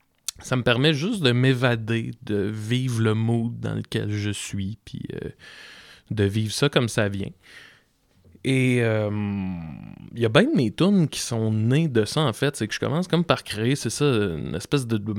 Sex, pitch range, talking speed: male, 105-120 Hz, 200 wpm